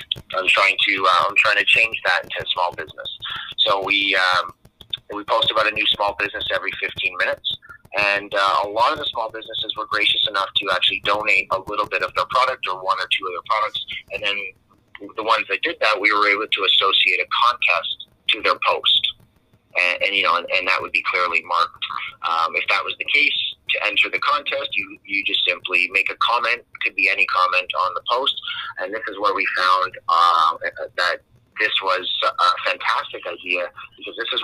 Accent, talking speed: American, 215 wpm